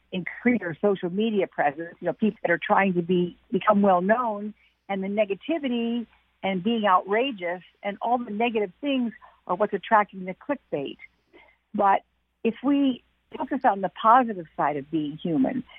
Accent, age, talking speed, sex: American, 50-69, 155 wpm, female